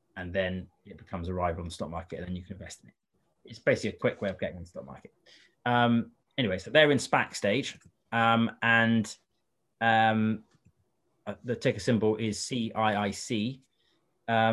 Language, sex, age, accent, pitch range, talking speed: English, male, 30-49, British, 100-125 Hz, 175 wpm